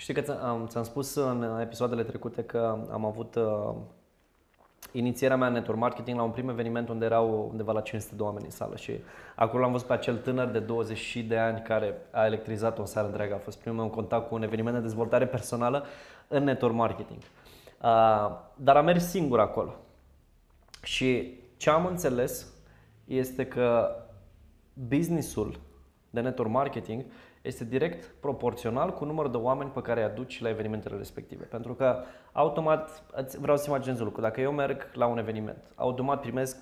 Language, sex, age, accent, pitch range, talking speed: Romanian, male, 20-39, native, 110-130 Hz, 165 wpm